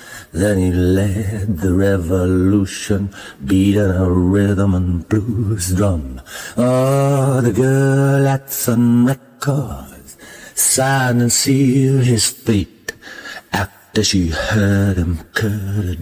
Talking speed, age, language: 105 wpm, 60-79, English